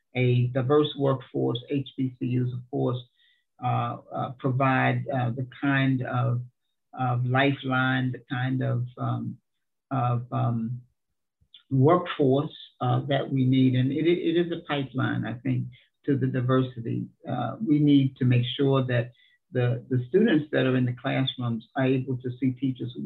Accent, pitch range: American, 120-135 Hz